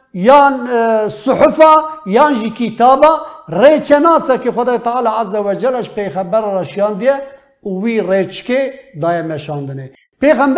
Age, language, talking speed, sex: 50-69, Turkish, 125 wpm, male